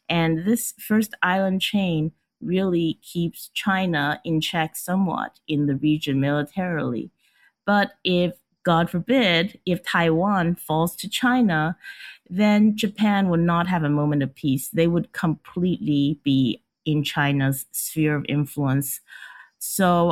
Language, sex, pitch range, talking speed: English, female, 145-200 Hz, 130 wpm